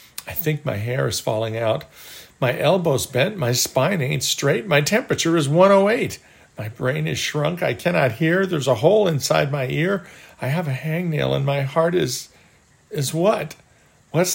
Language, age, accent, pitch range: English, 50-69, American, 110-150 Hz